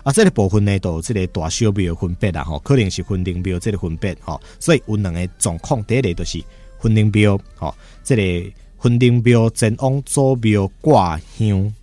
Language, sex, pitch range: Chinese, male, 85-110 Hz